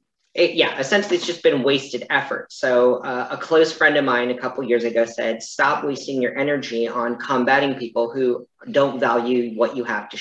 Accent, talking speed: American, 195 wpm